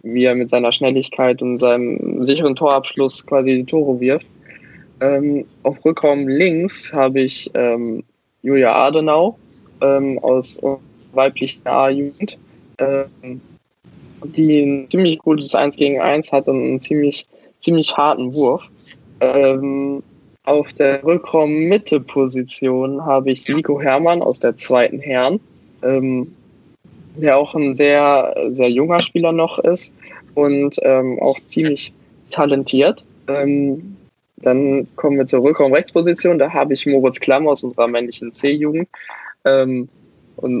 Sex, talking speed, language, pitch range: male, 125 wpm, German, 130-145 Hz